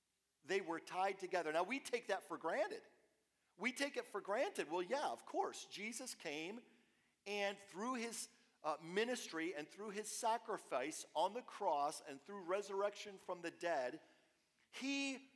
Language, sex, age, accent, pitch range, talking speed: English, male, 50-69, American, 180-240 Hz, 155 wpm